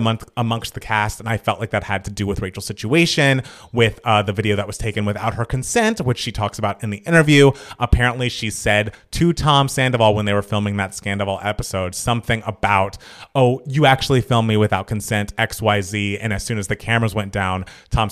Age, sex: 30-49, male